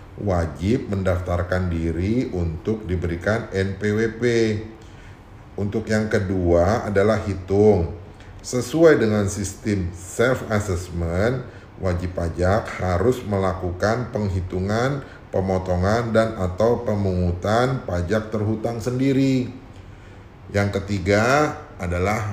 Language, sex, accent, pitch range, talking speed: Indonesian, male, native, 95-115 Hz, 80 wpm